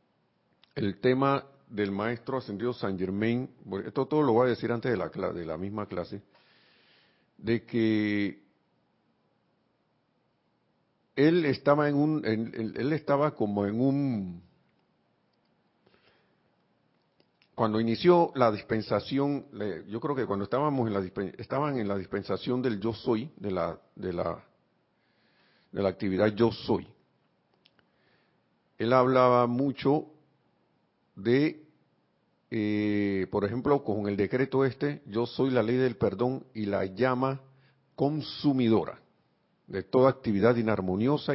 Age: 50-69